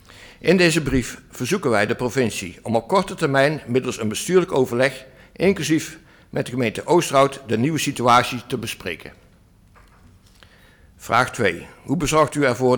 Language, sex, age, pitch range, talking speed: Dutch, male, 60-79, 110-145 Hz, 145 wpm